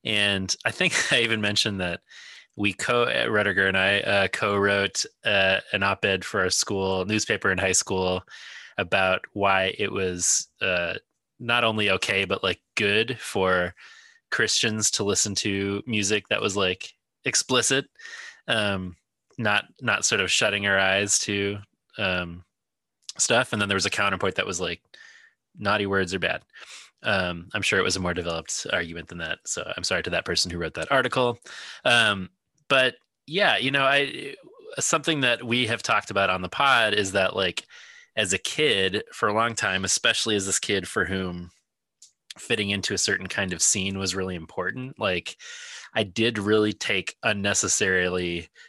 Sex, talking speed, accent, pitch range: male, 170 wpm, American, 90-110 Hz